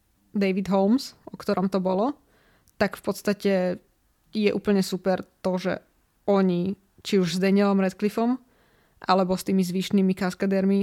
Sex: female